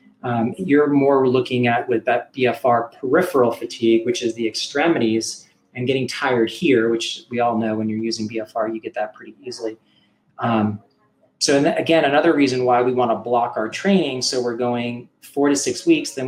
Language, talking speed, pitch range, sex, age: English, 190 wpm, 110-125 Hz, male, 30-49